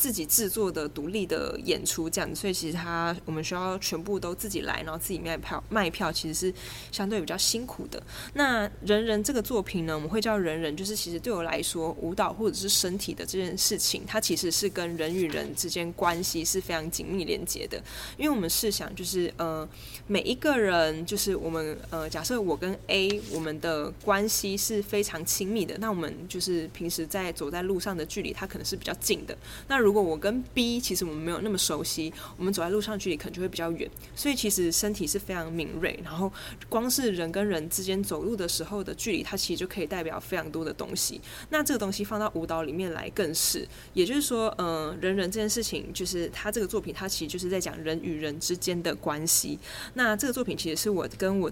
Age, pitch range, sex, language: 20-39, 165-205 Hz, female, Chinese